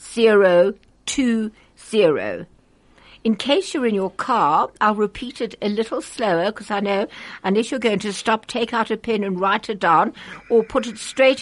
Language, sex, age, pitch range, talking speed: German, female, 60-79, 195-245 Hz, 185 wpm